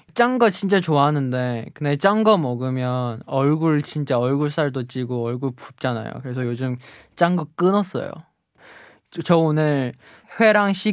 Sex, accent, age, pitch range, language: male, Korean, 20-39, 125-155 Hz, Chinese